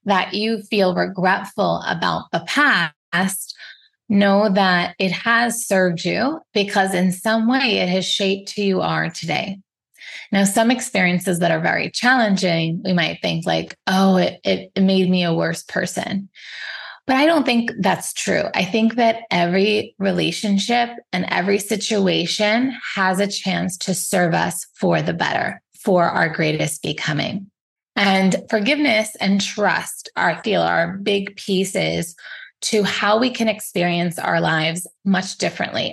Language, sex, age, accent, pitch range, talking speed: English, female, 20-39, American, 180-215 Hz, 150 wpm